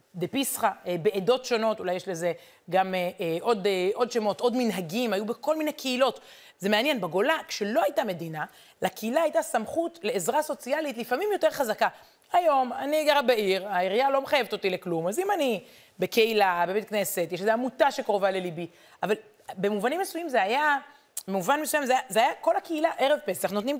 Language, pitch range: Hebrew, 190-275 Hz